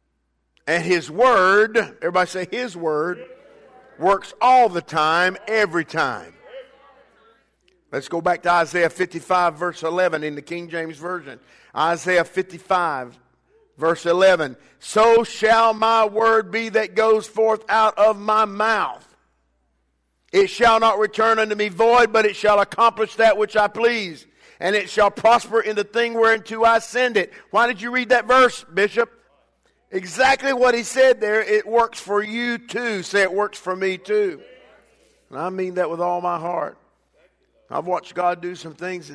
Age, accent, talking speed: 50-69, American, 160 wpm